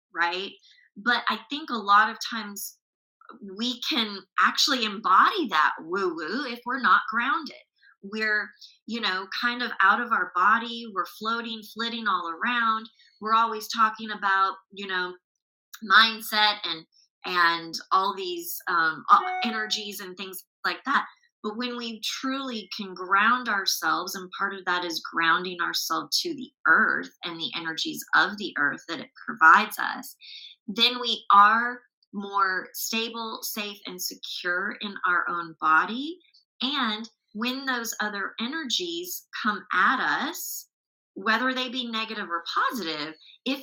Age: 20-39